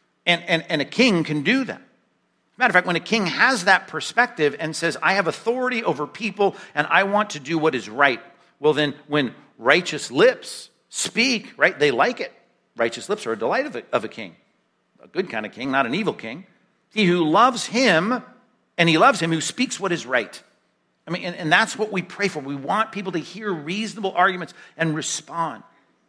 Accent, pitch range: American, 145-200 Hz